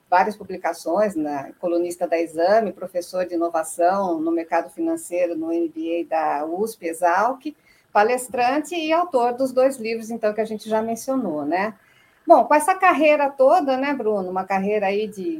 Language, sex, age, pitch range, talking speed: Portuguese, female, 50-69, 185-260 Hz, 160 wpm